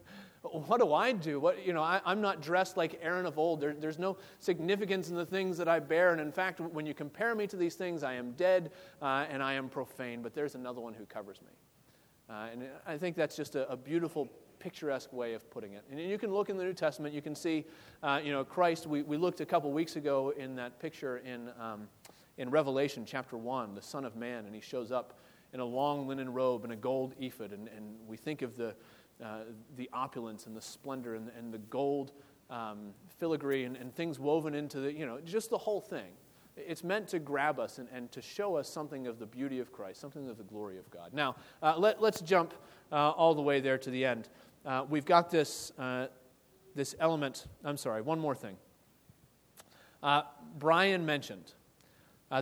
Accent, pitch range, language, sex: American, 130-165 Hz, English, male